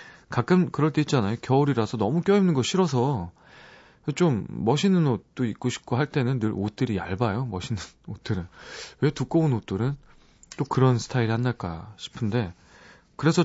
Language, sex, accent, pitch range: Korean, male, native, 105-150 Hz